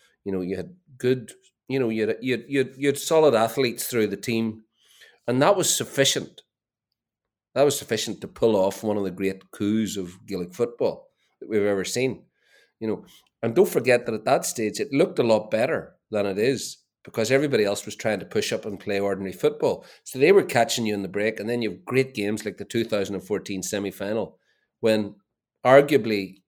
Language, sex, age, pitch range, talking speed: English, male, 30-49, 100-125 Hz, 195 wpm